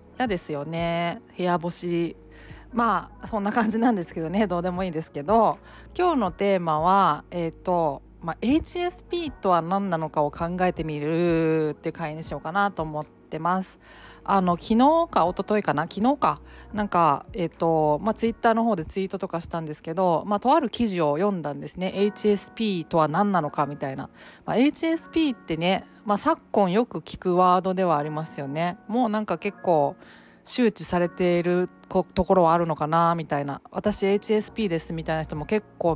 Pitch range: 160-215 Hz